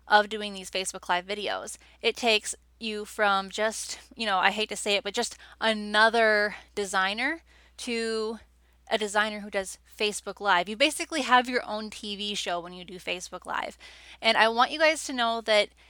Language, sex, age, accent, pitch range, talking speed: English, female, 10-29, American, 195-240 Hz, 185 wpm